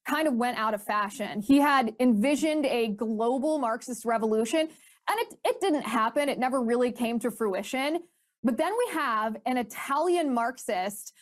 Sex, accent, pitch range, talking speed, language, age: female, American, 225-290 Hz, 165 wpm, English, 20-39